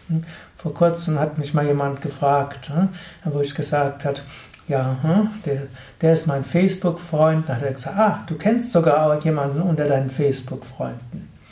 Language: German